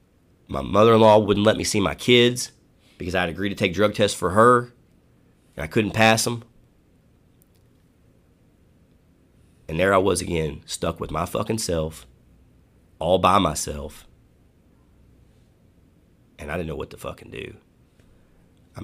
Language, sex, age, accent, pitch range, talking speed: English, male, 30-49, American, 80-115 Hz, 145 wpm